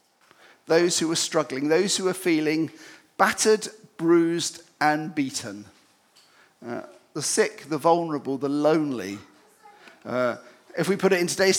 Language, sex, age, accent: English, male, 50-69, British